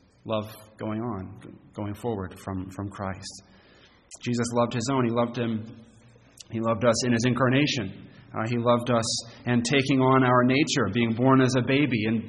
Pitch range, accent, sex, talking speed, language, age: 110-135 Hz, American, male, 175 wpm, English, 30-49